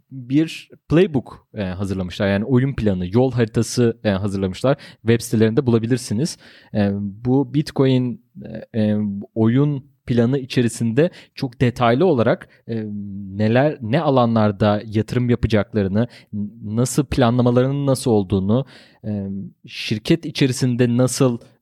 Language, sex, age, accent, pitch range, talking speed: Turkish, male, 30-49, native, 110-135 Hz, 90 wpm